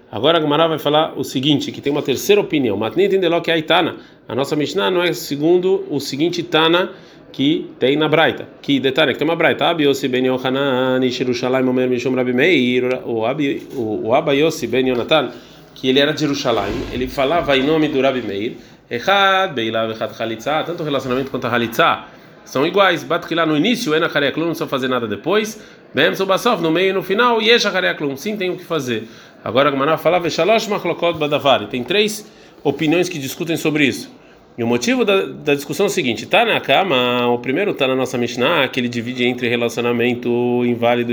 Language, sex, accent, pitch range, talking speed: Portuguese, male, Brazilian, 125-170 Hz, 175 wpm